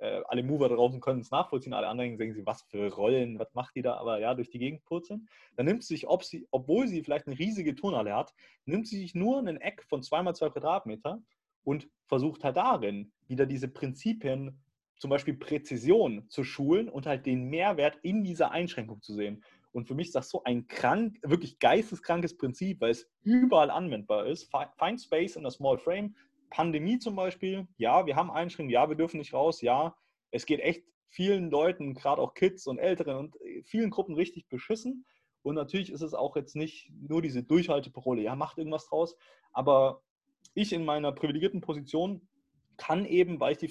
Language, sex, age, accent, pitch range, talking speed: German, male, 30-49, German, 130-185 Hz, 195 wpm